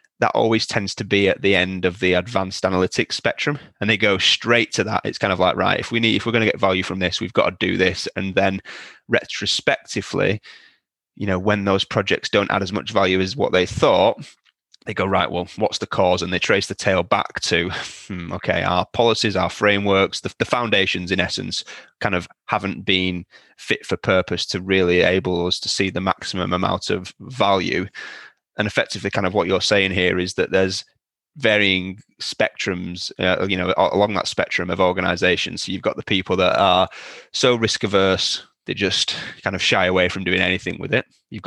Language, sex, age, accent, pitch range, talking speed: English, male, 20-39, British, 90-100 Hz, 205 wpm